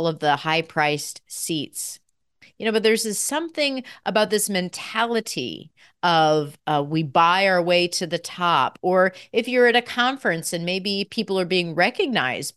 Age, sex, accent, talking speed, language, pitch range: 40-59, female, American, 160 wpm, English, 155-205 Hz